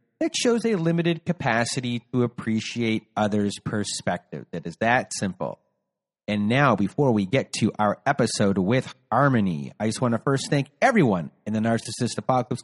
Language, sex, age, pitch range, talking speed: English, male, 30-49, 130-200 Hz, 160 wpm